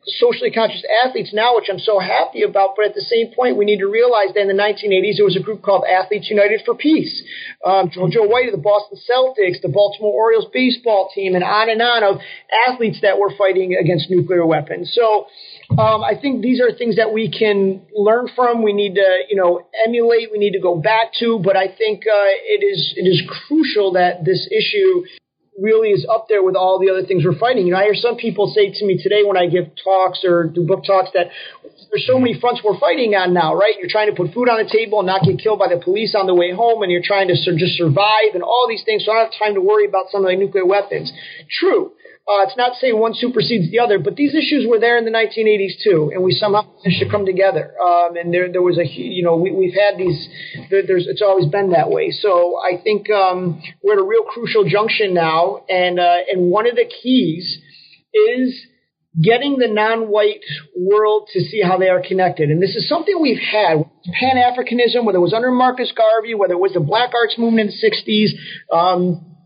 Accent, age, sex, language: American, 40-59, male, English